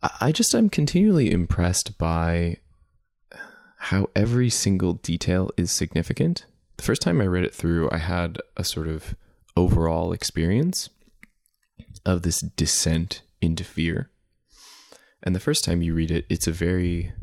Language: English